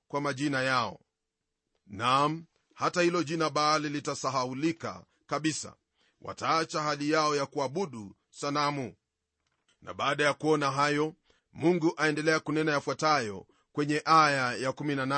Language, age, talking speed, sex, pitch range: Swahili, 40-59, 110 wpm, male, 135-155 Hz